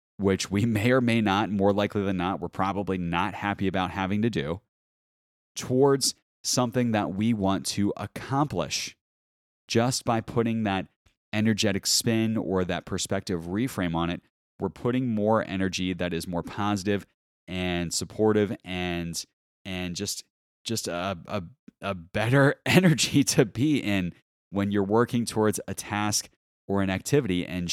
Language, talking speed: English, 150 wpm